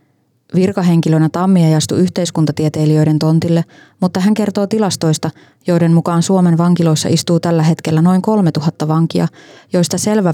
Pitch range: 155-180 Hz